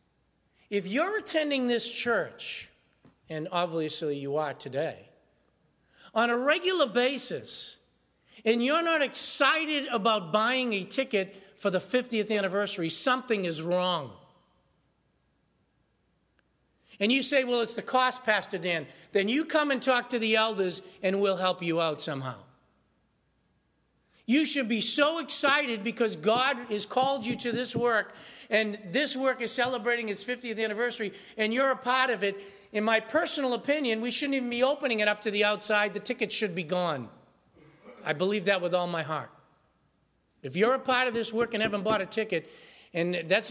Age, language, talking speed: 50-69, English, 165 wpm